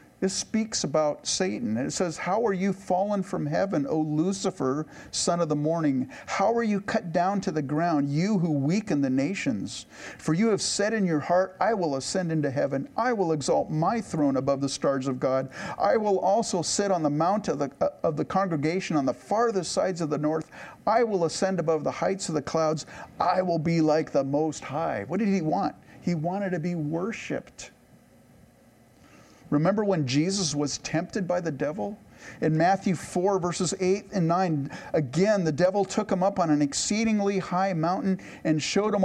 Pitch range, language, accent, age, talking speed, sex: 145-190 Hz, English, American, 50-69, 195 wpm, male